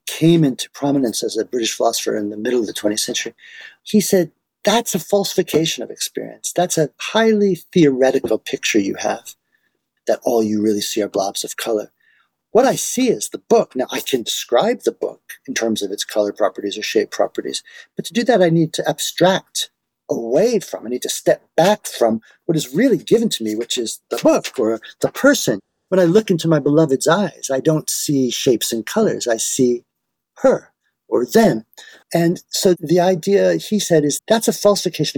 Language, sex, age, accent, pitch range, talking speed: English, male, 50-69, American, 130-195 Hz, 195 wpm